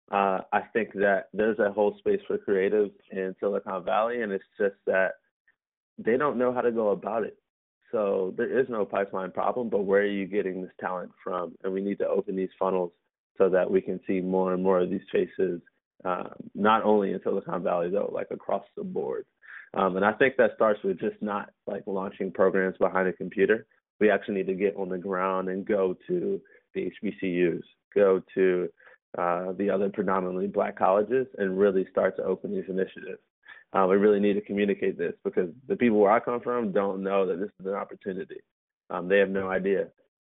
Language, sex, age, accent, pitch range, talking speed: English, male, 30-49, American, 95-120 Hz, 205 wpm